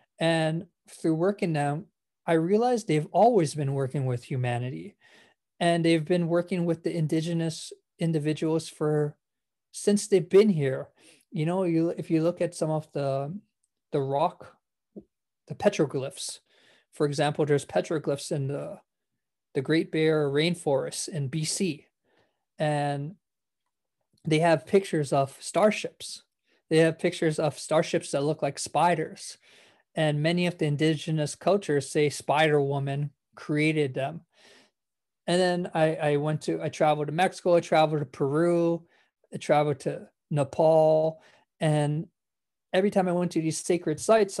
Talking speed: 140 wpm